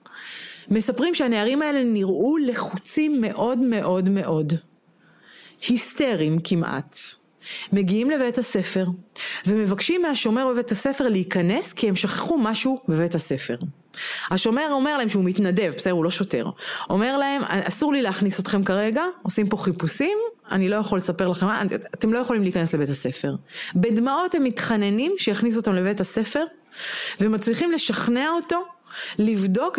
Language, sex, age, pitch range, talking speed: Hebrew, female, 30-49, 185-260 Hz, 130 wpm